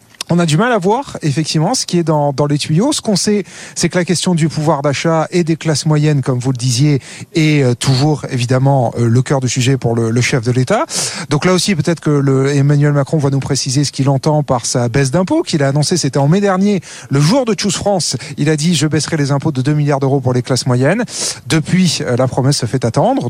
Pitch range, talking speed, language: 140-180 Hz, 245 wpm, French